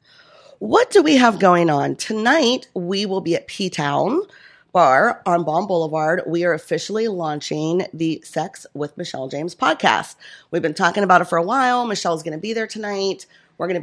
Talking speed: 185 wpm